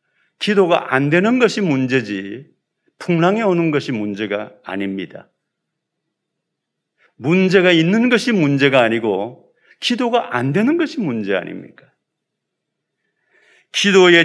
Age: 40-59